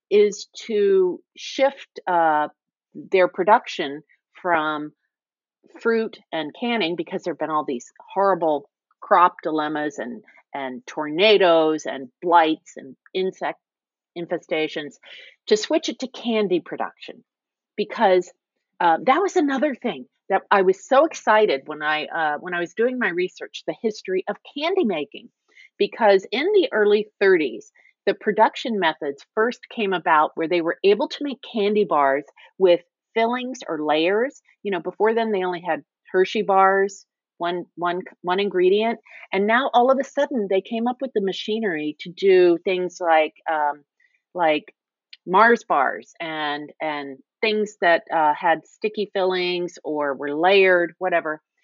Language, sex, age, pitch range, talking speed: English, female, 40-59, 165-230 Hz, 145 wpm